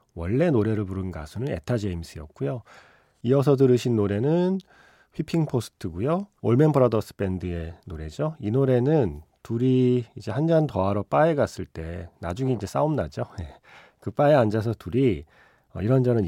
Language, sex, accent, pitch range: Korean, male, native, 90-130 Hz